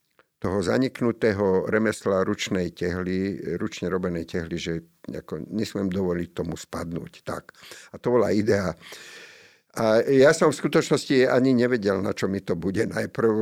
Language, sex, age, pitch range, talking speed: Slovak, male, 50-69, 90-110 Hz, 140 wpm